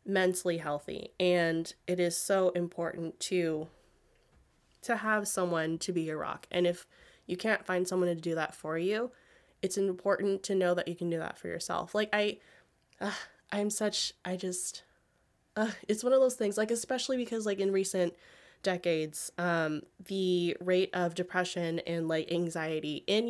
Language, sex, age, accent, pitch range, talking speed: English, female, 20-39, American, 170-220 Hz, 170 wpm